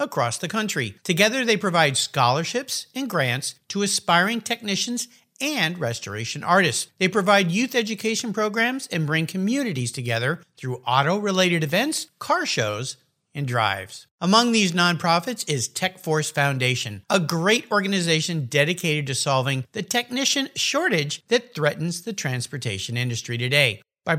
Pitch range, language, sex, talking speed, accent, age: 135-210 Hz, English, male, 135 wpm, American, 50-69